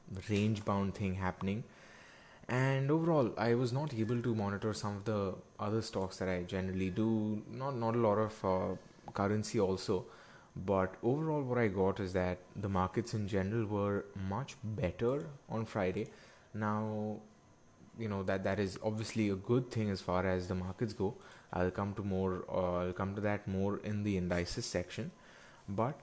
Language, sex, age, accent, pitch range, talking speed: English, male, 20-39, Indian, 95-115 Hz, 175 wpm